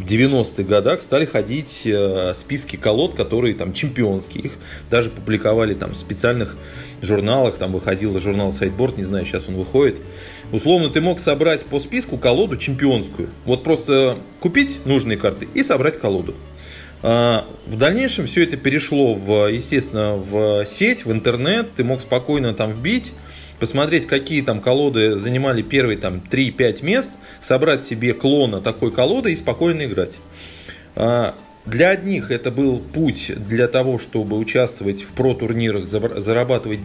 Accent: native